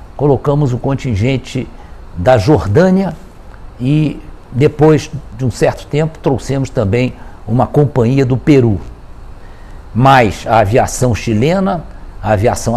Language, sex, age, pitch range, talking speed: Portuguese, male, 60-79, 105-140 Hz, 110 wpm